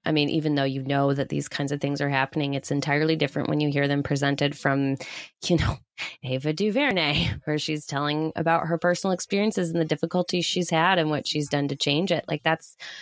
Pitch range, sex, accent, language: 135-165 Hz, female, American, English